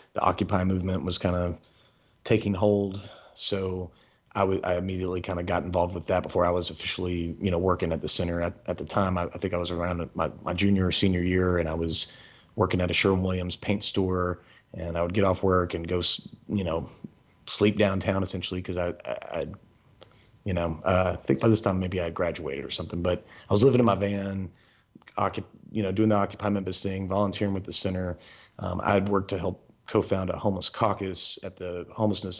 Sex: male